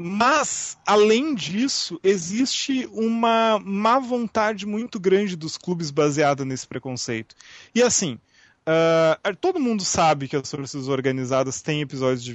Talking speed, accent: 130 wpm, Brazilian